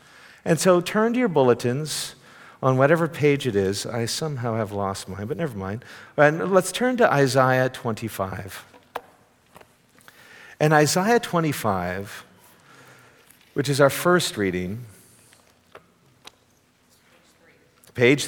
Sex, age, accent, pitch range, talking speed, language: male, 50-69, American, 105-150 Hz, 110 wpm, English